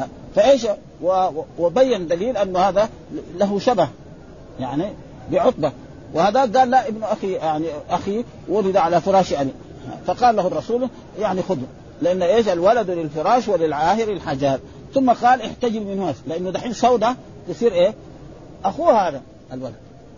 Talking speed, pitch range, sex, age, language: 130 wpm, 160-235 Hz, male, 50-69, Arabic